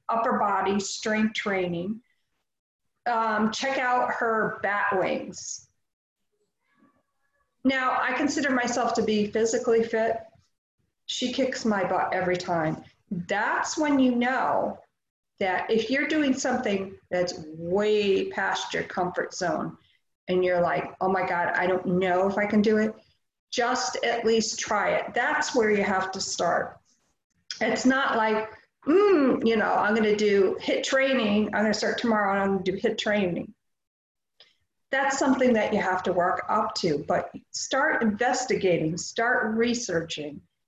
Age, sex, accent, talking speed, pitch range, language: 40-59, female, American, 150 wpm, 195-255 Hz, English